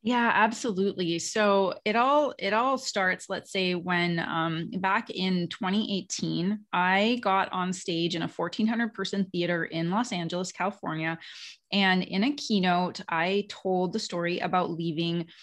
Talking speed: 150 wpm